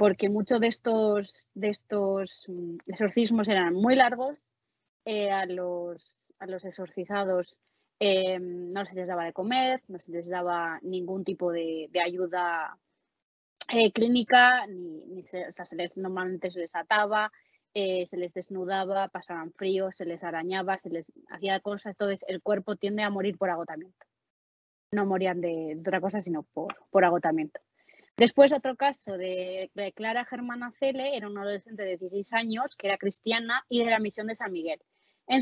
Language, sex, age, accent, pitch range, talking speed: Spanish, female, 20-39, Spanish, 185-225 Hz, 170 wpm